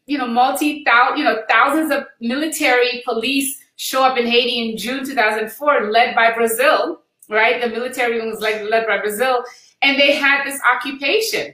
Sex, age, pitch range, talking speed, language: female, 30-49, 230-280 Hz, 165 wpm, English